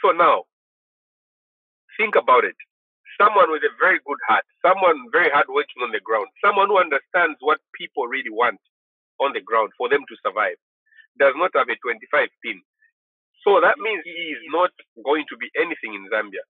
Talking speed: 180 wpm